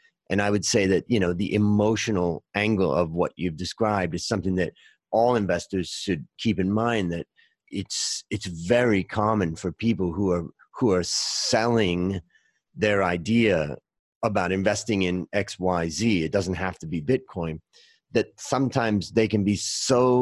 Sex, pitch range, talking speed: male, 90-115 Hz, 155 wpm